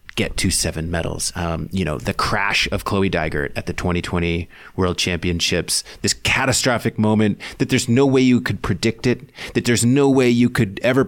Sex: male